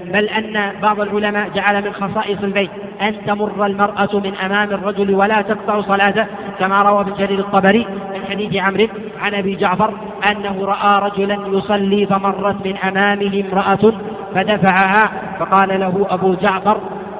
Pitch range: 185-200 Hz